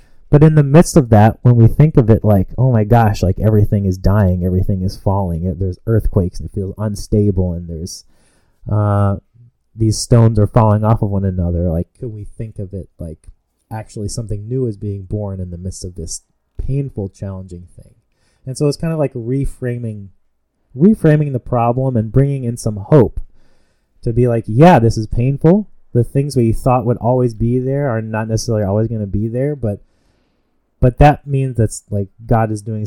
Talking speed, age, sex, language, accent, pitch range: 195 wpm, 30-49, male, English, American, 95-125 Hz